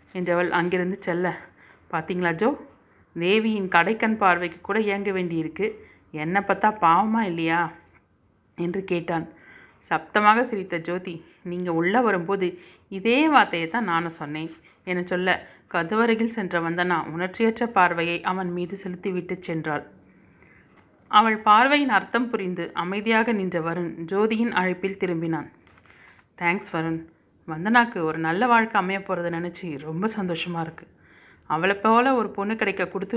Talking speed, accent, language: 120 wpm, native, Tamil